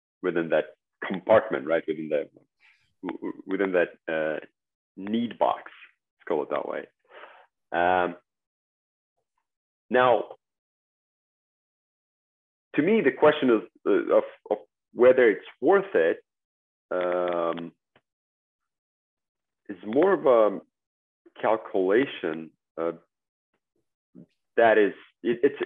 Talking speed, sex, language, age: 90 wpm, male, English, 40-59